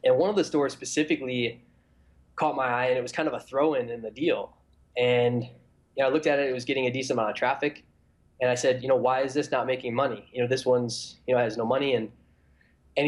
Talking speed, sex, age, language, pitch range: 250 wpm, male, 10-29, English, 110-135 Hz